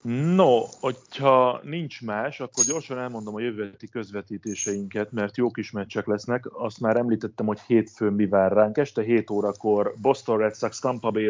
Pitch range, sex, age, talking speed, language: 105-115 Hz, male, 30-49, 165 wpm, Hungarian